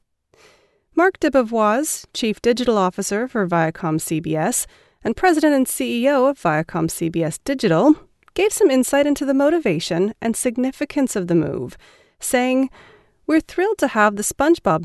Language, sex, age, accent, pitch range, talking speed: English, female, 30-49, American, 180-285 Hz, 135 wpm